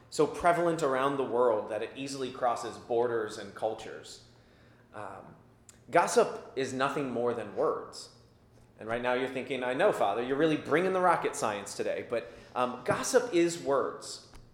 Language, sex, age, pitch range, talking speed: English, male, 30-49, 125-210 Hz, 160 wpm